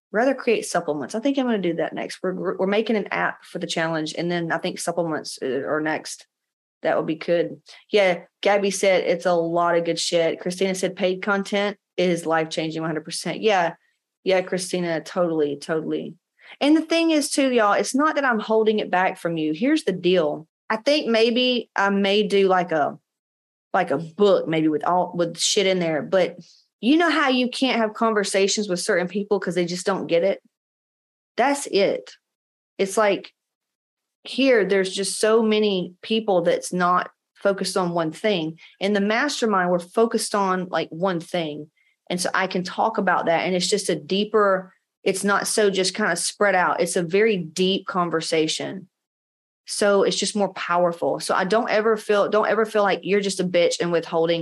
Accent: American